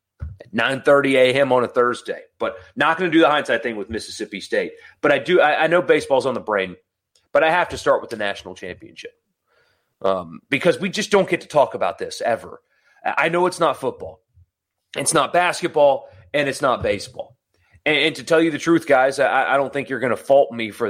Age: 30-49